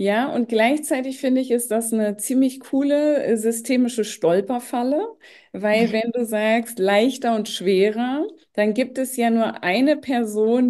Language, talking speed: German, 145 wpm